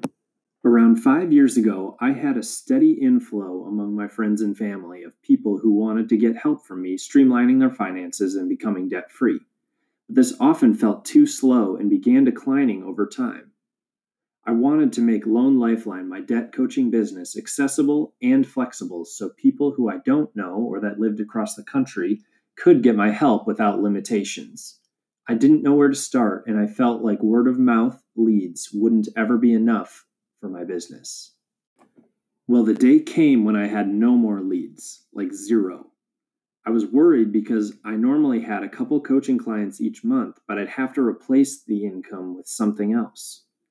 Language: English